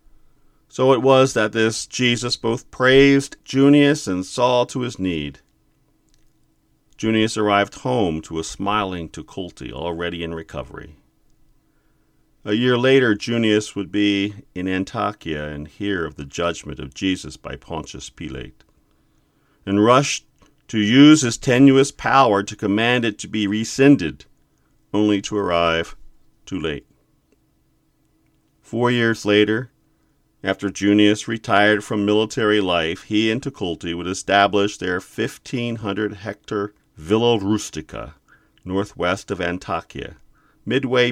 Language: English